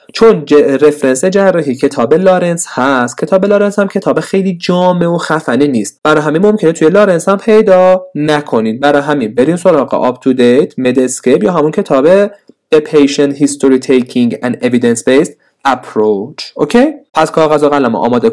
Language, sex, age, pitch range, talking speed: Persian, male, 30-49, 125-190 Hz, 155 wpm